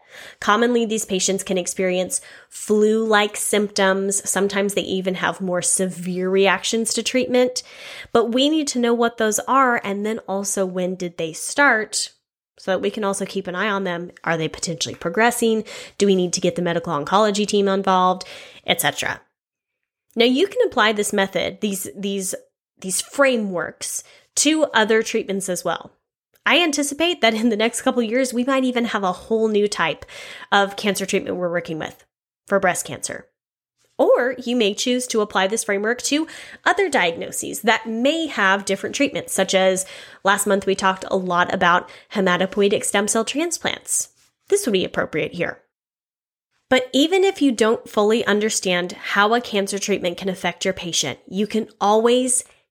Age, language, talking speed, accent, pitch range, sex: 10-29, English, 170 wpm, American, 190-235 Hz, female